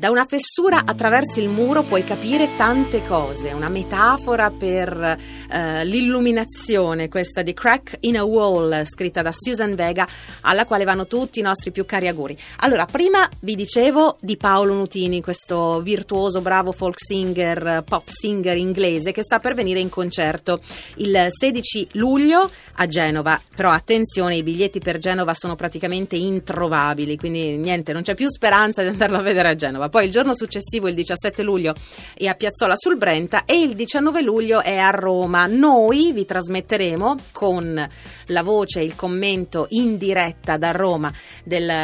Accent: native